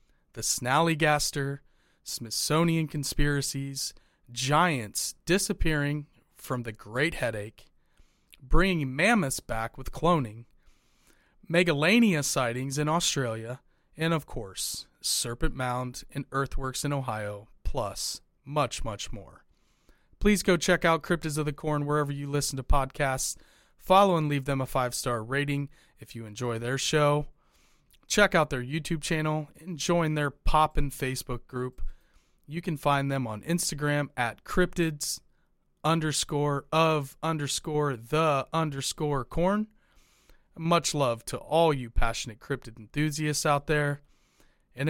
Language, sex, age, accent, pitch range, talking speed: English, male, 30-49, American, 125-160 Hz, 125 wpm